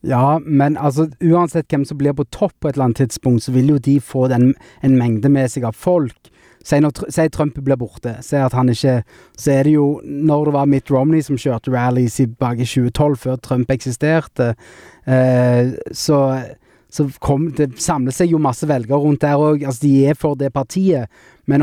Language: English